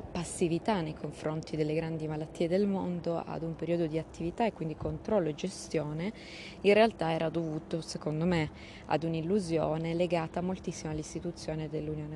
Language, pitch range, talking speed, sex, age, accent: Italian, 150-170 Hz, 150 wpm, female, 20-39, native